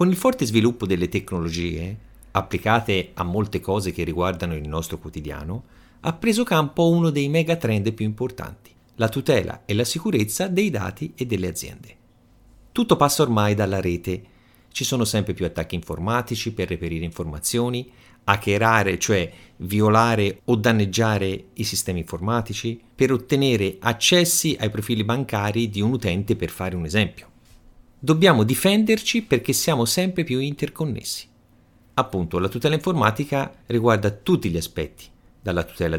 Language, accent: Italian, native